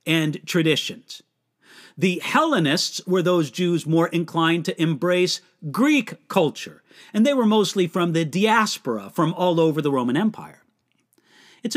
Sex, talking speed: male, 140 wpm